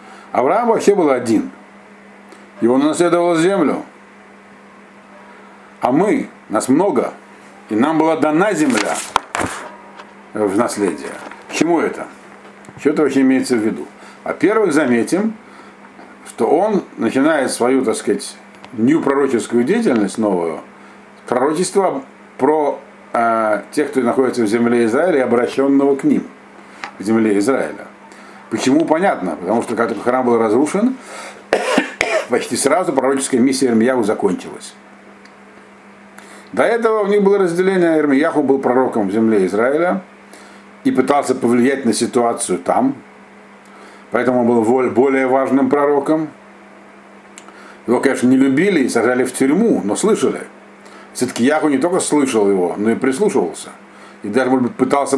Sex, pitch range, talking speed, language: male, 115-150 Hz, 130 wpm, Russian